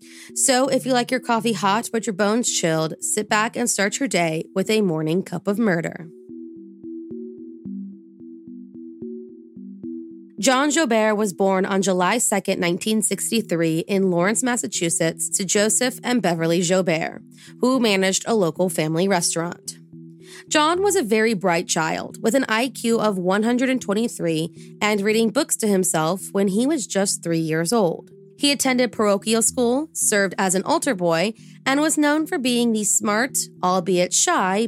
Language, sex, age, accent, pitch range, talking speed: English, female, 20-39, American, 170-225 Hz, 150 wpm